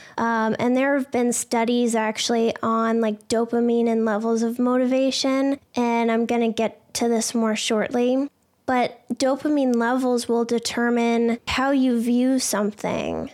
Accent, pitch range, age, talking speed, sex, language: American, 230-255 Hz, 10-29, 145 wpm, female, English